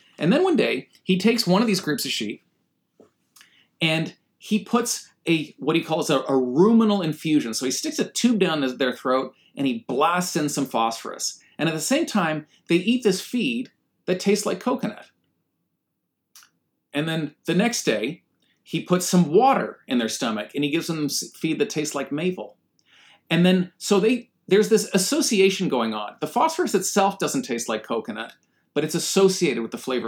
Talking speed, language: 185 wpm, English